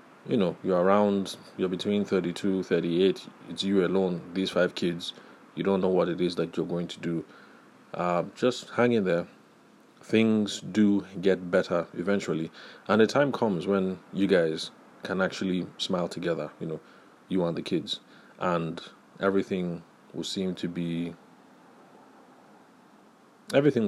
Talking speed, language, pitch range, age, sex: 155 wpm, English, 85-105 Hz, 30-49, male